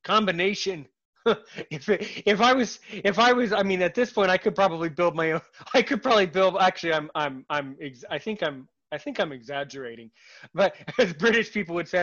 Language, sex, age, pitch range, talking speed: English, male, 20-39, 145-195 Hz, 205 wpm